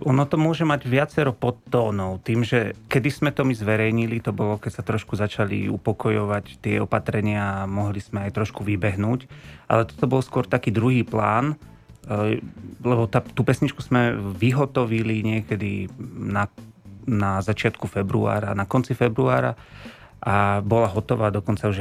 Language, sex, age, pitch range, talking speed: Slovak, male, 30-49, 105-125 Hz, 150 wpm